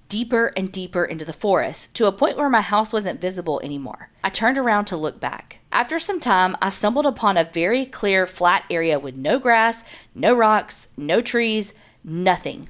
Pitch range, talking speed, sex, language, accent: 180-235 Hz, 190 wpm, female, English, American